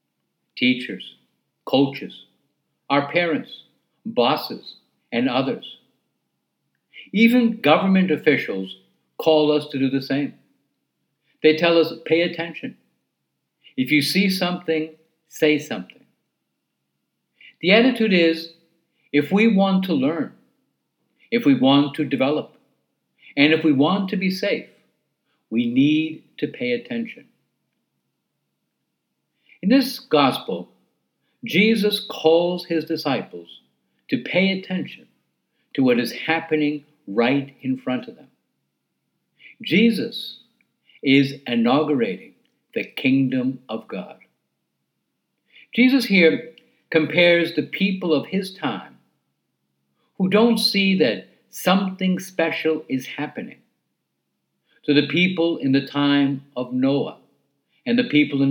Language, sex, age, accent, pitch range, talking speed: English, male, 60-79, American, 140-200 Hz, 110 wpm